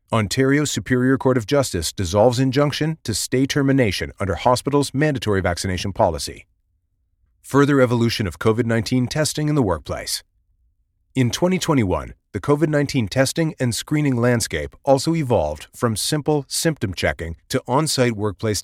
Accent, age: American, 40-59